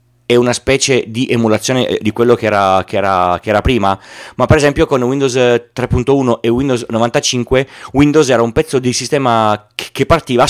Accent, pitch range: native, 110-145 Hz